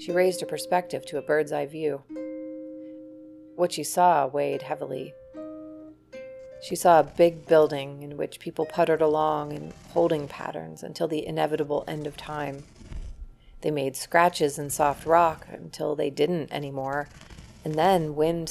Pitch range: 145-170 Hz